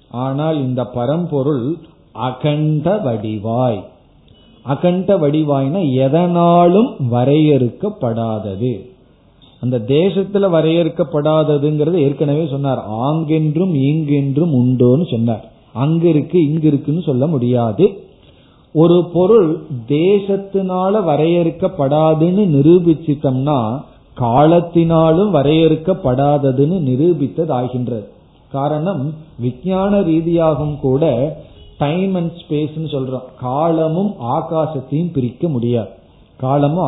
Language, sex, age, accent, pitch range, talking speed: Tamil, male, 40-59, native, 130-165 Hz, 75 wpm